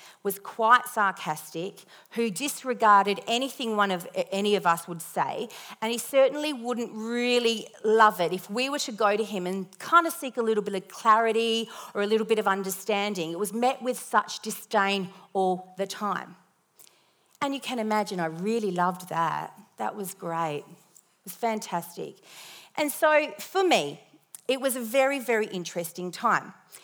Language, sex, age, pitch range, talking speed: English, female, 40-59, 190-250 Hz, 170 wpm